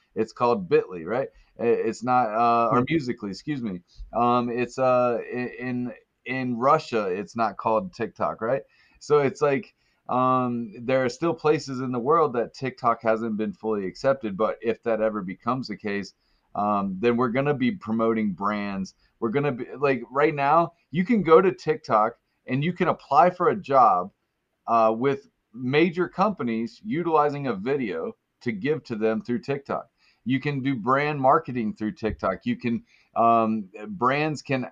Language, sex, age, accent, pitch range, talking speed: English, male, 30-49, American, 115-150 Hz, 165 wpm